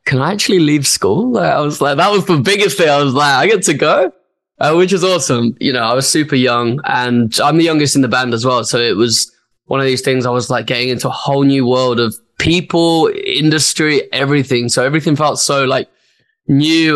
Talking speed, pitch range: 230 wpm, 125-150 Hz